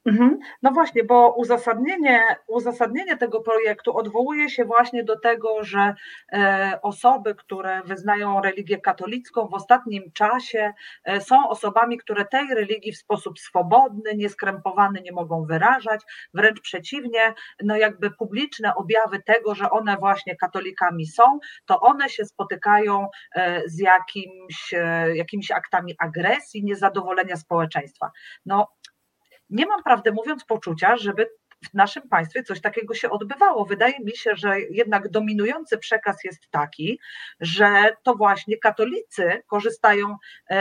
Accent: native